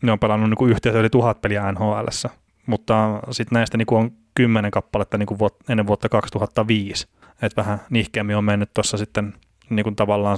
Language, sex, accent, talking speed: Finnish, male, native, 145 wpm